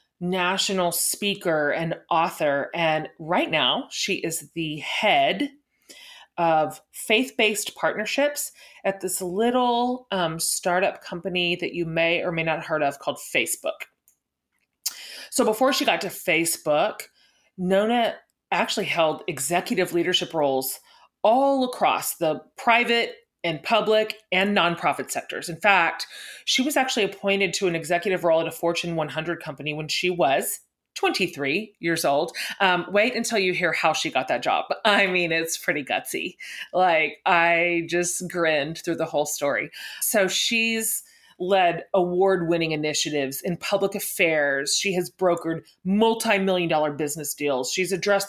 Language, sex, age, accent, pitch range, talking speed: English, female, 30-49, American, 165-210 Hz, 140 wpm